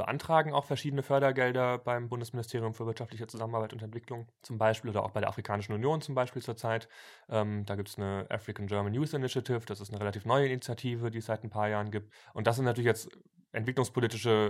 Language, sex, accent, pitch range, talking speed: German, male, German, 100-120 Hz, 205 wpm